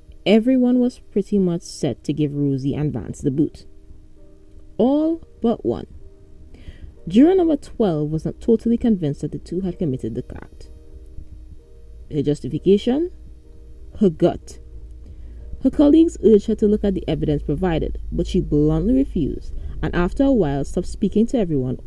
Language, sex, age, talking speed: English, female, 20-39, 150 wpm